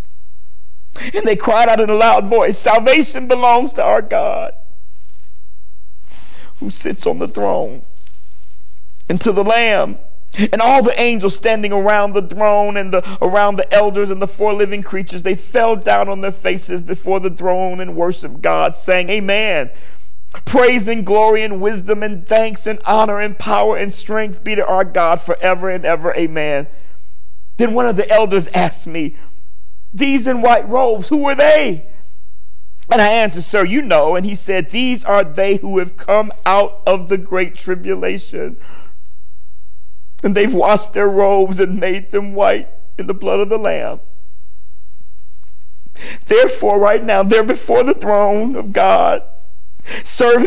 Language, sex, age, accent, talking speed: English, male, 50-69, American, 160 wpm